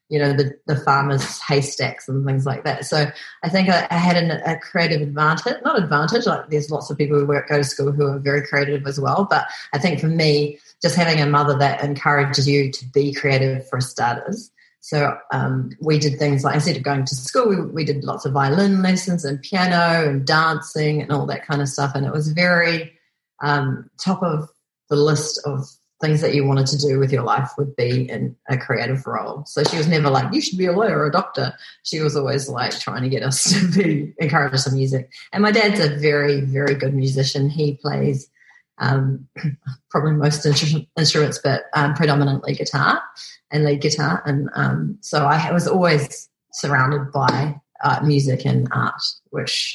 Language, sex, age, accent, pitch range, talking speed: English, female, 40-59, Australian, 140-160 Hz, 205 wpm